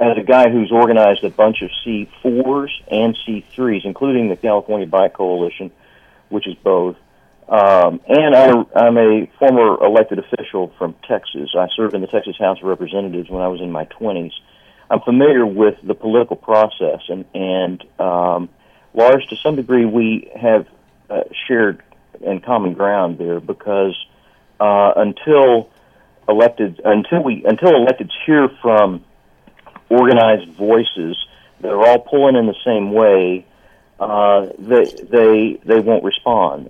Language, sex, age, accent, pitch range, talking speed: English, male, 50-69, American, 95-115 Hz, 150 wpm